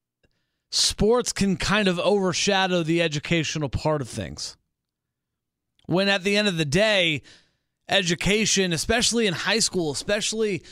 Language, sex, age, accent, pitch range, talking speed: English, male, 30-49, American, 145-200 Hz, 130 wpm